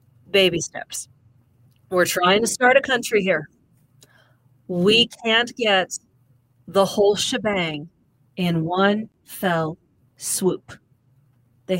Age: 40-59